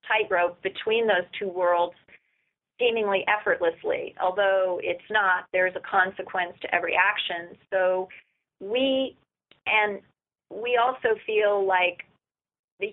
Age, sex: 30-49, female